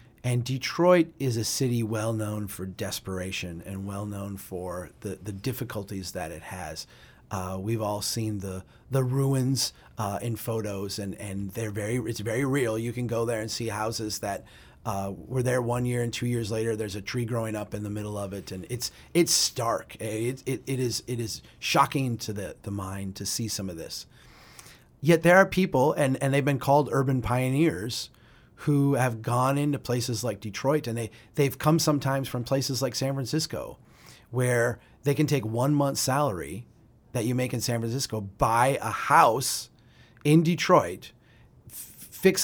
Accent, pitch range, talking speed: American, 110-135 Hz, 180 wpm